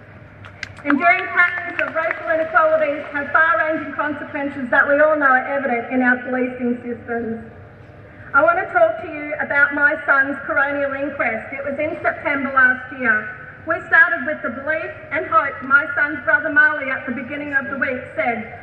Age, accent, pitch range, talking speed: 40-59, Australian, 280-335 Hz, 170 wpm